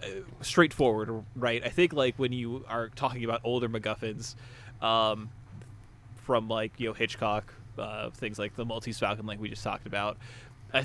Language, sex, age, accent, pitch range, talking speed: English, male, 20-39, American, 110-125 Hz, 165 wpm